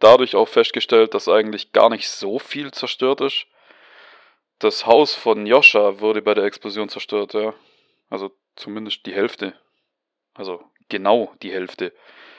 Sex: male